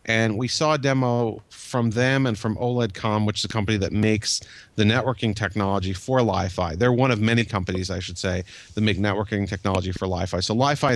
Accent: American